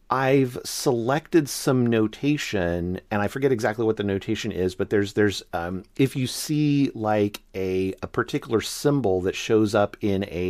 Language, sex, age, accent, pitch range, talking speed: English, male, 40-59, American, 95-120 Hz, 165 wpm